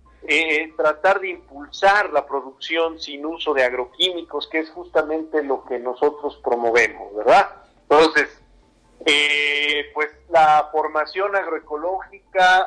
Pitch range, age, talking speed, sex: 140-170 Hz, 50-69, 115 wpm, male